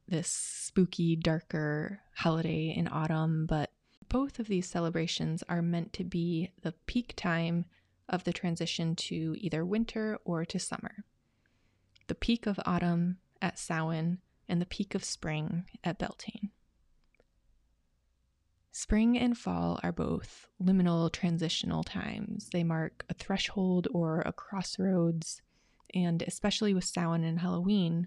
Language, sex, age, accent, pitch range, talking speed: English, female, 20-39, American, 165-190 Hz, 130 wpm